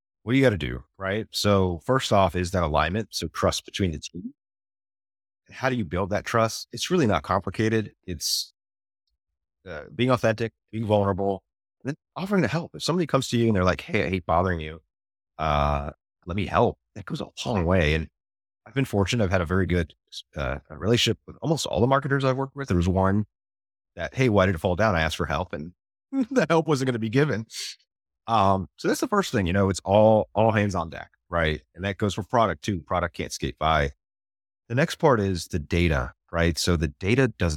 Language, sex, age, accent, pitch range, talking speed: English, male, 30-49, American, 85-115 Hz, 220 wpm